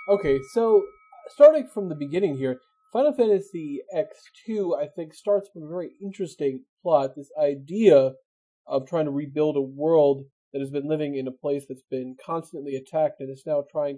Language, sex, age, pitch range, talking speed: English, male, 30-49, 135-175 Hz, 175 wpm